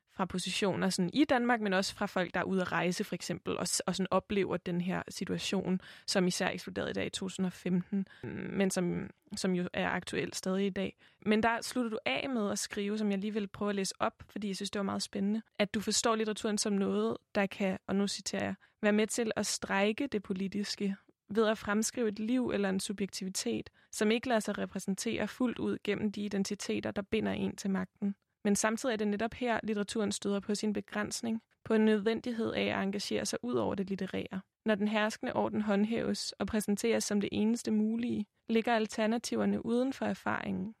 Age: 20-39